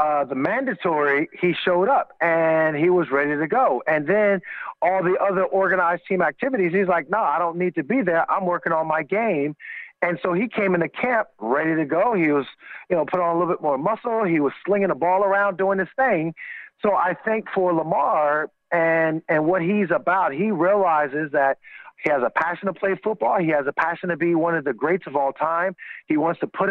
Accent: American